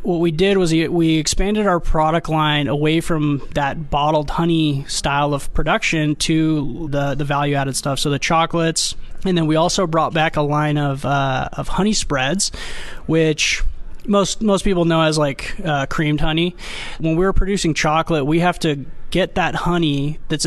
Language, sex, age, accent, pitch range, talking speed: English, male, 20-39, American, 150-175 Hz, 175 wpm